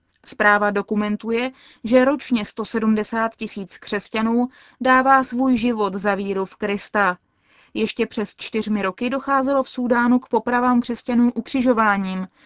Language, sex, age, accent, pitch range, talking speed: Czech, female, 20-39, native, 210-255 Hz, 120 wpm